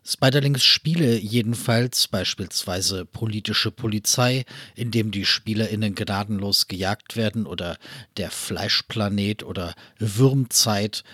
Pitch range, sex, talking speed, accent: 100-120 Hz, male, 95 wpm, German